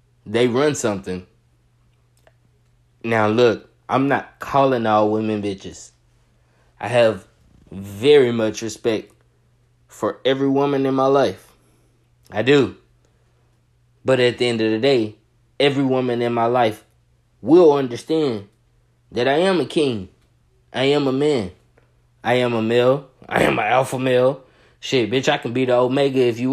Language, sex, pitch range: English, male, 115-135 Hz